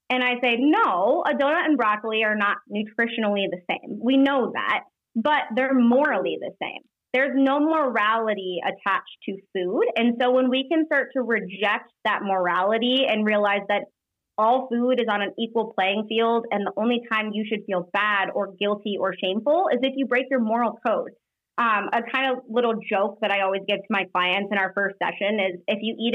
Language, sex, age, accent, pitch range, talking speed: English, female, 20-39, American, 205-260 Hz, 200 wpm